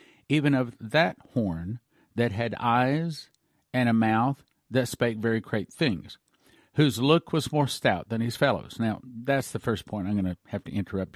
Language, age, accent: English, 50-69, American